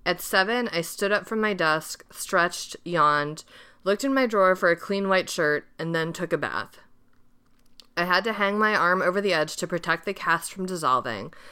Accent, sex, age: American, female, 30-49